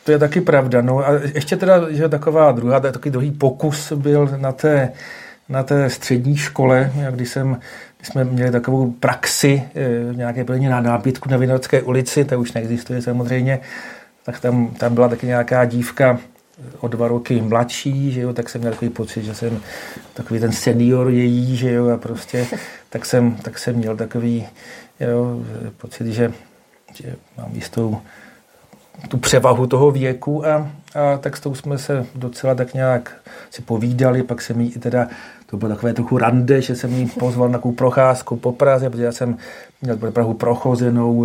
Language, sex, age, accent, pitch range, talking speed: Czech, male, 50-69, native, 120-140 Hz, 175 wpm